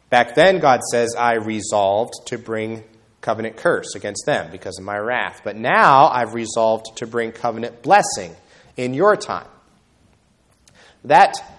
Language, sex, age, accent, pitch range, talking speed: English, male, 30-49, American, 115-165 Hz, 145 wpm